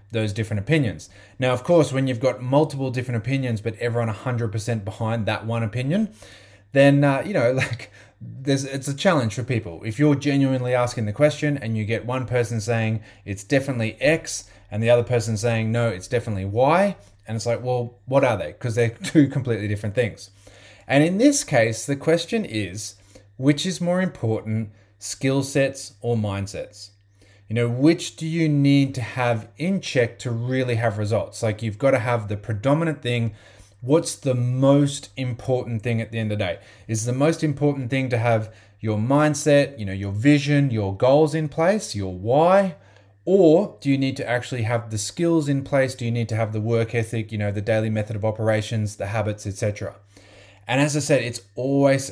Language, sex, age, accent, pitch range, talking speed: English, male, 20-39, Australian, 110-140 Hz, 195 wpm